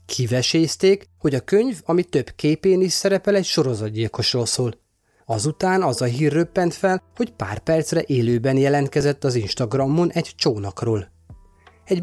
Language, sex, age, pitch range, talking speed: Hungarian, male, 30-49, 115-170 Hz, 140 wpm